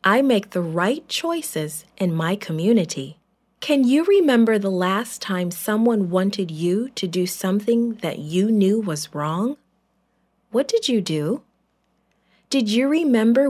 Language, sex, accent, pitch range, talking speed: English, female, American, 185-255 Hz, 140 wpm